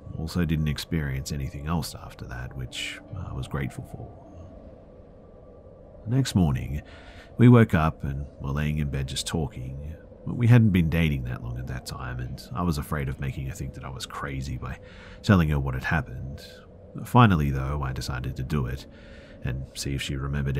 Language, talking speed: English, 185 wpm